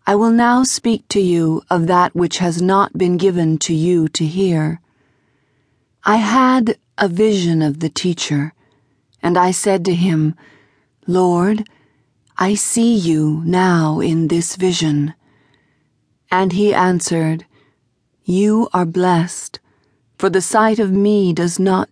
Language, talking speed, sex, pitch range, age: English, 135 wpm, female, 150-200 Hz, 40-59